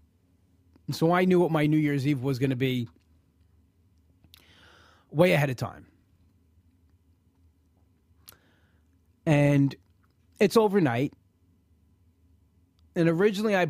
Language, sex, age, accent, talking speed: English, male, 30-49, American, 95 wpm